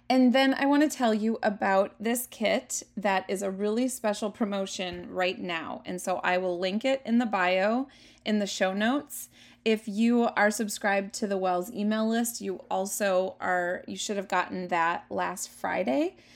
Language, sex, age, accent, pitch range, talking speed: English, female, 20-39, American, 185-240 Hz, 185 wpm